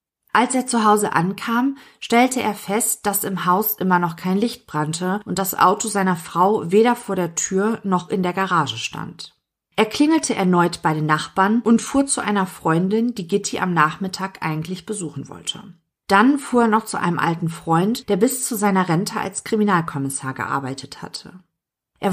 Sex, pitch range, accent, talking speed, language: female, 175-220 Hz, German, 180 wpm, German